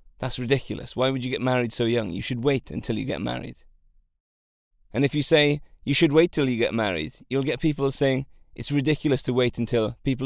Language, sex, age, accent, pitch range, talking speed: English, male, 30-49, British, 105-145 Hz, 215 wpm